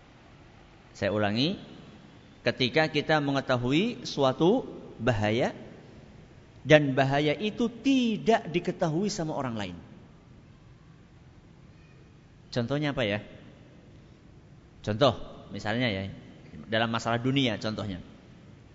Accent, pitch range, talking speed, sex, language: native, 115-155 Hz, 80 wpm, male, Indonesian